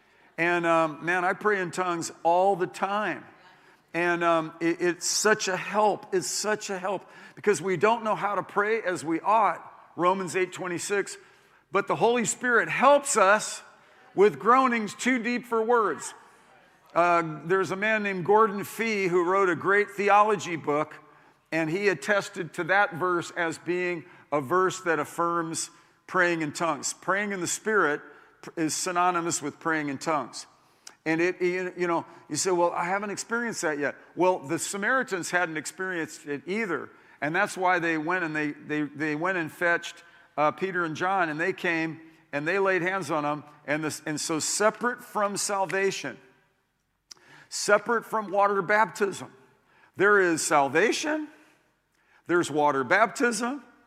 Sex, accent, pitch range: male, American, 160-200 Hz